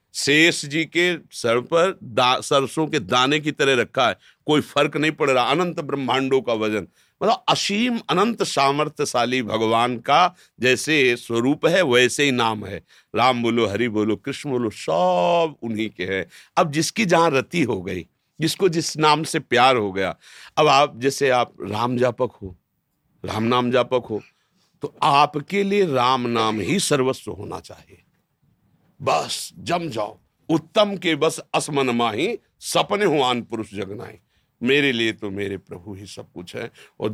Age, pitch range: 50-69, 110-160 Hz